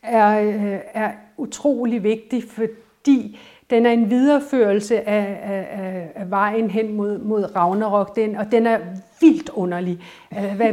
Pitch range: 200-235 Hz